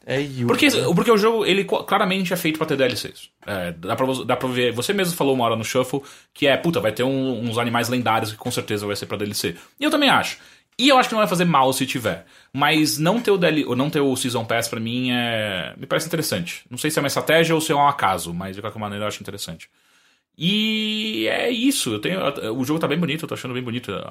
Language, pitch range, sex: English, 110-140 Hz, male